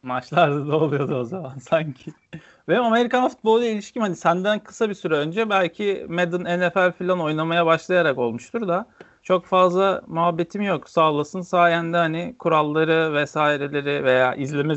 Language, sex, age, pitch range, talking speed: Turkish, male, 40-59, 130-175 Hz, 140 wpm